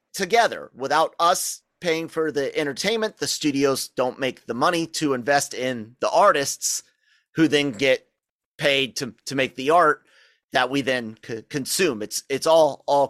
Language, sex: English, male